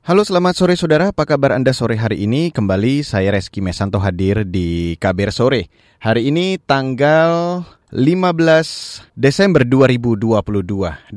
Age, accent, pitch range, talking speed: 20-39, native, 115-150 Hz, 130 wpm